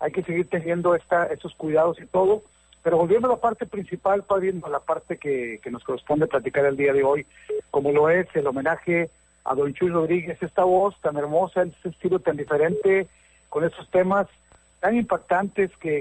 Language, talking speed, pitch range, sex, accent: Spanish, 185 wpm, 140-180 Hz, male, Mexican